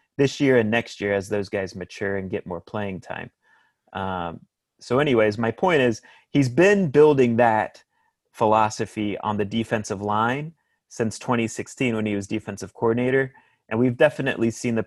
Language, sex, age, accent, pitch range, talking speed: English, male, 30-49, American, 105-115 Hz, 165 wpm